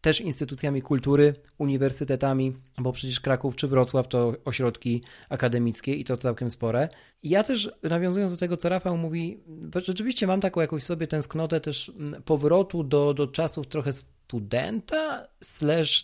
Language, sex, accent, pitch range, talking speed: Polish, male, native, 125-150 Hz, 140 wpm